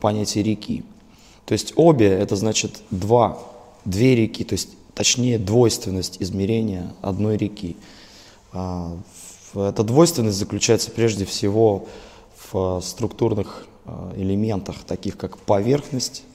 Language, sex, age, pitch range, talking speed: Russian, male, 20-39, 95-110 Hz, 100 wpm